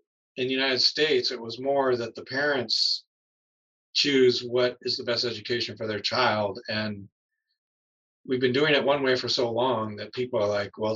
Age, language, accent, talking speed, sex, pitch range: 40-59, English, American, 185 wpm, male, 110-130 Hz